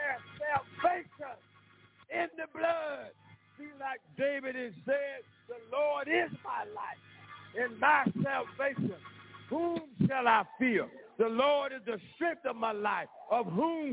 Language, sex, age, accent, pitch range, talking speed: English, male, 50-69, American, 245-320 Hz, 135 wpm